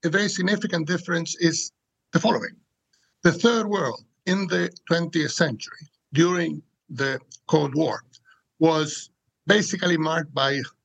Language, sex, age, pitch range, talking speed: English, male, 60-79, 145-175 Hz, 120 wpm